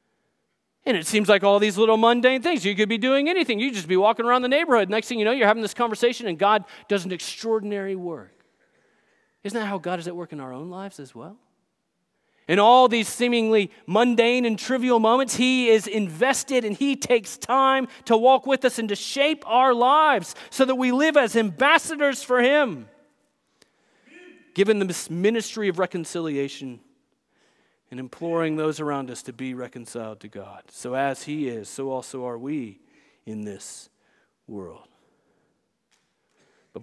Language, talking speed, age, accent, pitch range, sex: English, 175 wpm, 40-59, American, 175-250 Hz, male